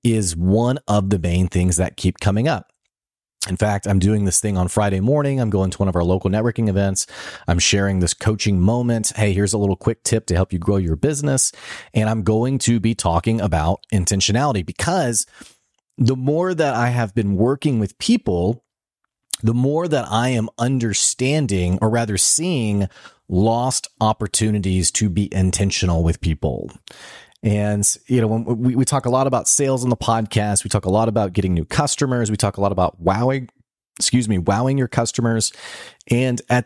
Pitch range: 95-120 Hz